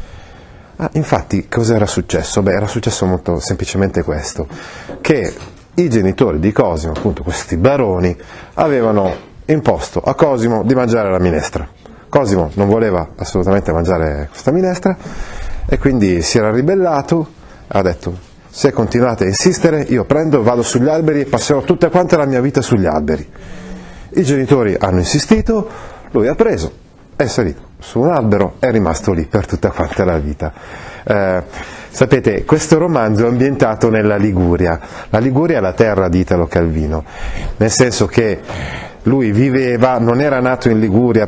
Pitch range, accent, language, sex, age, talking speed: 90-125 Hz, native, Italian, male, 40-59, 155 wpm